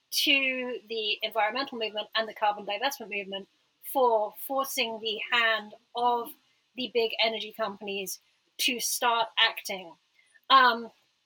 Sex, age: female, 30-49